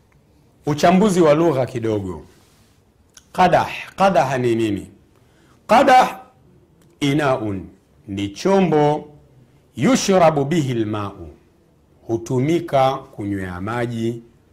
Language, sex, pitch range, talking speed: Swahili, male, 110-165 Hz, 75 wpm